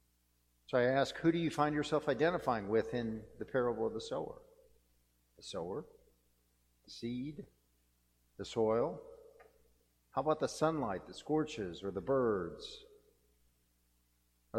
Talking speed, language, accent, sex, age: 130 wpm, English, American, male, 50-69